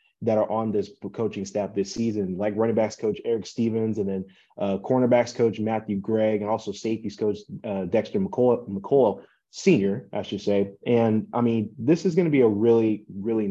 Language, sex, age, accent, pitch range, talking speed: English, male, 20-39, American, 100-115 Hz, 195 wpm